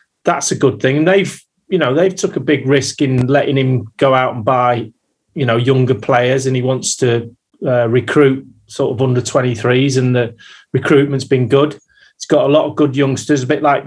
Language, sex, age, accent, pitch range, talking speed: English, male, 30-49, British, 120-140 Hz, 210 wpm